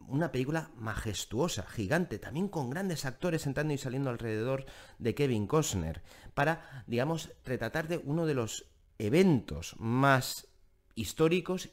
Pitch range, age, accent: 95-135 Hz, 30-49, Spanish